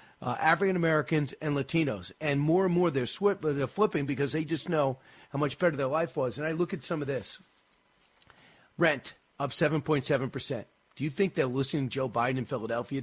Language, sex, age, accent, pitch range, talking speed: English, male, 40-59, American, 140-185 Hz, 195 wpm